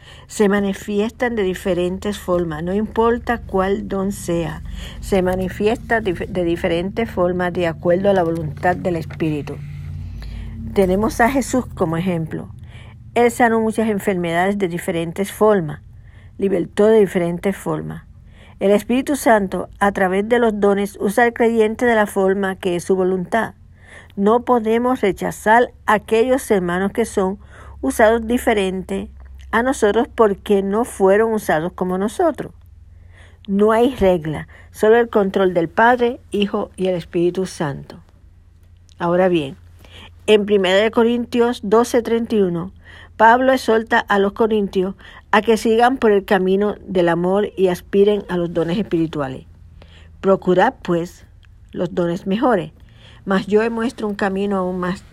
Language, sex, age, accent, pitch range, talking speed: Spanish, female, 50-69, American, 170-215 Hz, 135 wpm